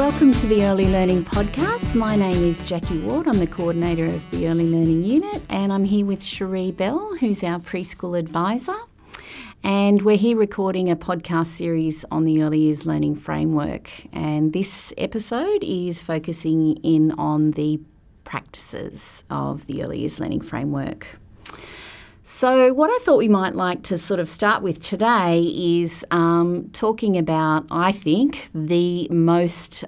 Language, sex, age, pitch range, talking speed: English, female, 30-49, 155-190 Hz, 155 wpm